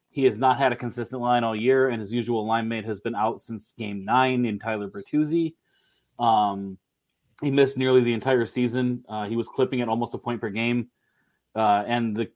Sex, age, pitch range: male, 20-39, 110-130 Hz